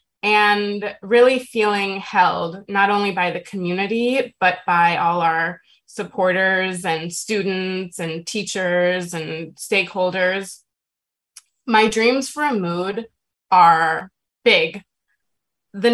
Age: 20-39